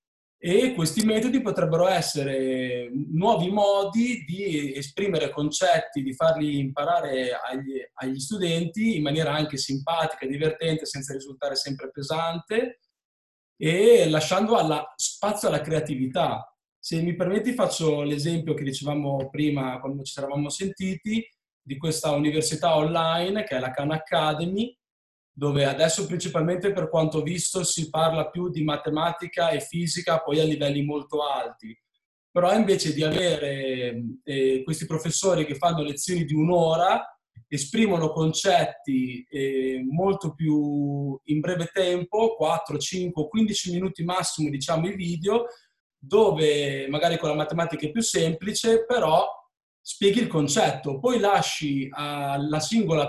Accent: native